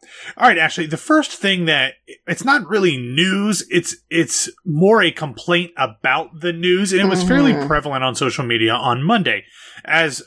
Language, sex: English, male